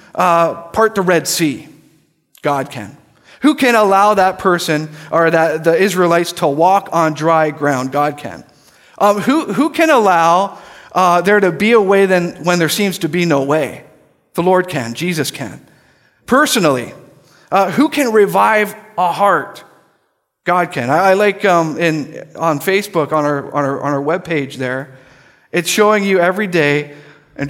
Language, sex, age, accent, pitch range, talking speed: English, male, 40-59, American, 145-195 Hz, 170 wpm